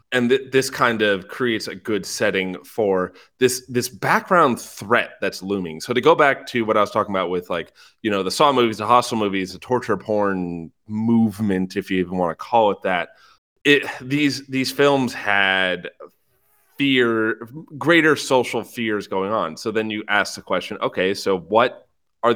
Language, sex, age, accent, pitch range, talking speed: English, male, 30-49, American, 95-125 Hz, 185 wpm